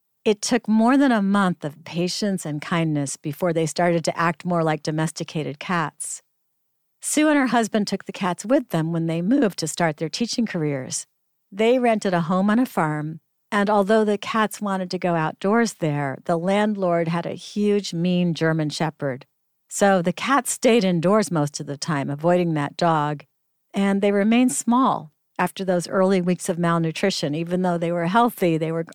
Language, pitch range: English, 155-205 Hz